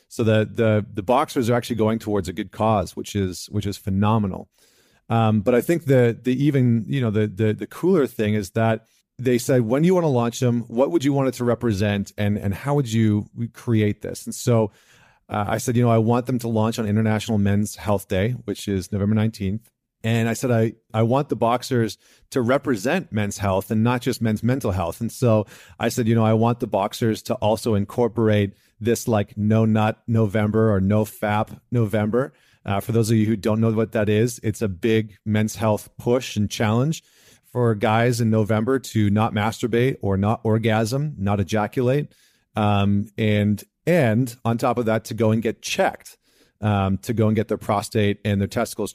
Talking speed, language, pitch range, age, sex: 210 wpm, English, 105-120 Hz, 40-59, male